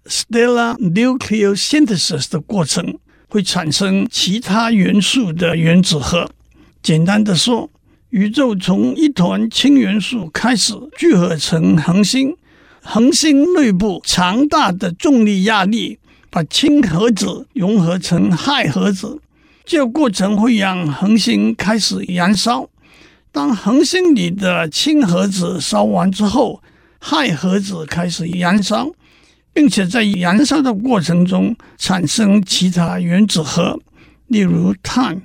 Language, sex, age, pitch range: Chinese, male, 60-79, 180-240 Hz